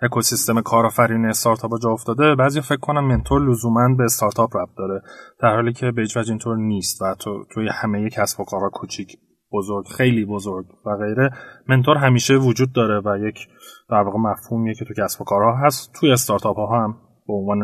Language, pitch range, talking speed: Persian, 105-145 Hz, 180 wpm